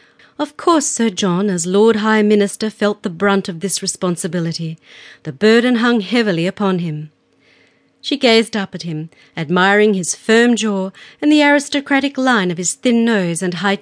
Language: English